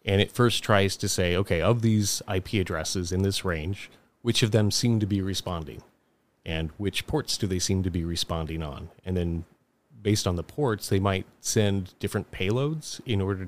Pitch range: 95-110 Hz